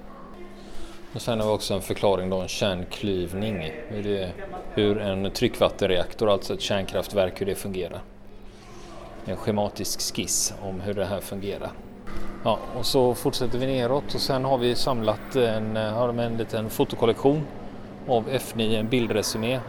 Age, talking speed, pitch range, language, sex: 30-49, 155 wpm, 100-125 Hz, Swedish, male